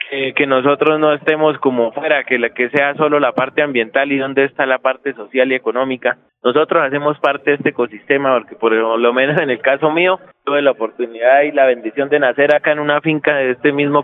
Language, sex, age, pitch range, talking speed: Spanish, male, 20-39, 130-155 Hz, 220 wpm